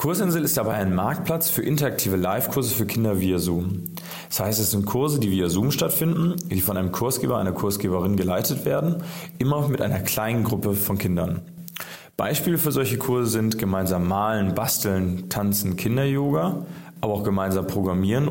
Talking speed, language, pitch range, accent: 165 wpm, German, 100-140 Hz, German